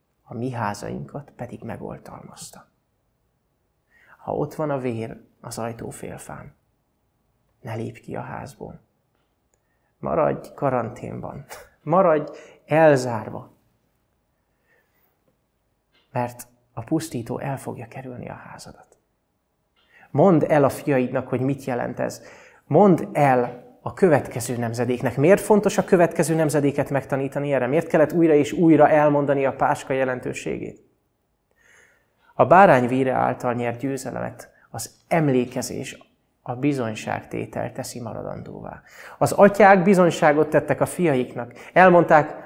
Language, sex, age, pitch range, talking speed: Hungarian, male, 30-49, 125-150 Hz, 110 wpm